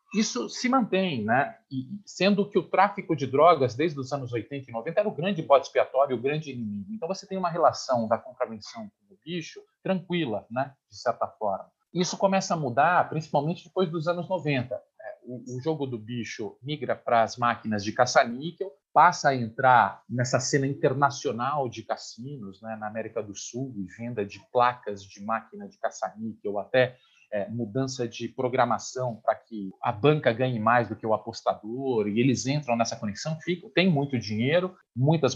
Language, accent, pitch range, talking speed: Portuguese, Brazilian, 115-175 Hz, 180 wpm